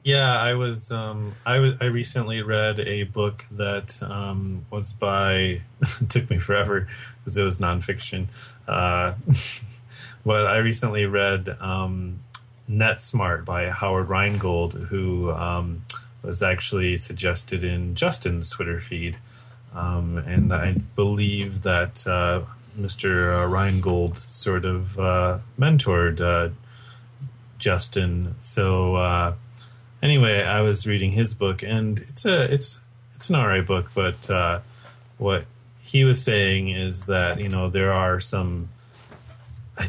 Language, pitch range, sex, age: English, 90-120 Hz, male, 30-49